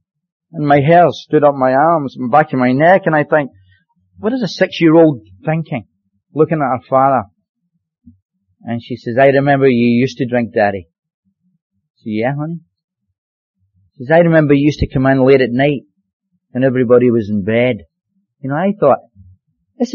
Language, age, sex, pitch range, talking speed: English, 40-59, male, 120-170 Hz, 175 wpm